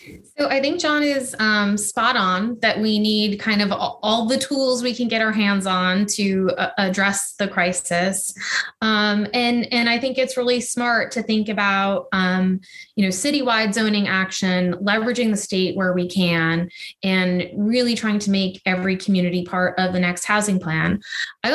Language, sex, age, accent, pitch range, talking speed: English, female, 20-39, American, 185-240 Hz, 180 wpm